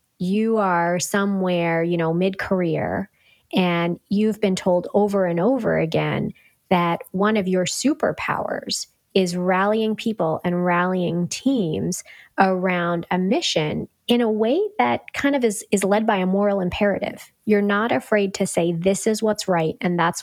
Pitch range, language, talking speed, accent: 175-210 Hz, English, 155 wpm, American